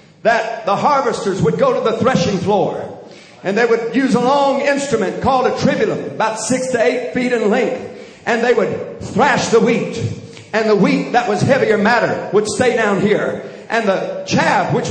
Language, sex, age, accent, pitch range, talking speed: English, male, 50-69, American, 220-290 Hz, 190 wpm